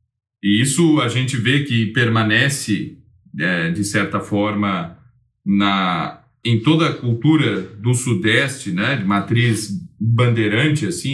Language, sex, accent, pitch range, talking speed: Portuguese, male, Brazilian, 110-160 Hz, 125 wpm